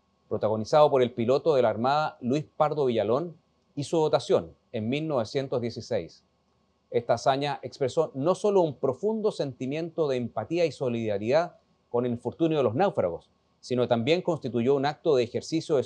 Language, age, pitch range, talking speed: Spanish, 40-59, 125-175 Hz, 155 wpm